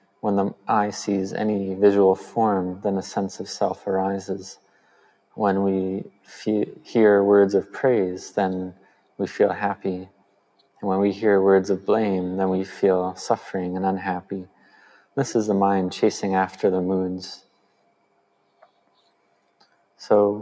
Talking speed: 130 wpm